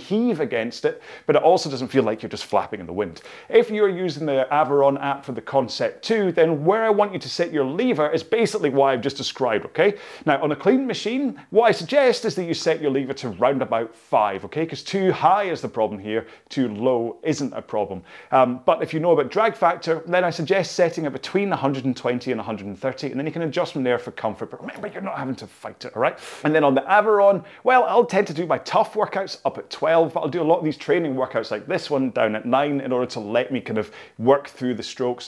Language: English